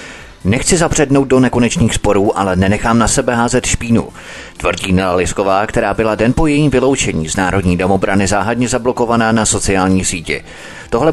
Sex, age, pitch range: male, 30-49, 95-120 Hz